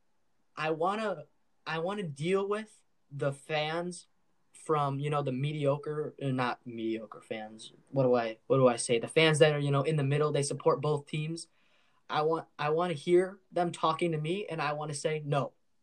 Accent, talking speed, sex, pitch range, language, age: American, 205 wpm, male, 135-175 Hz, English, 10-29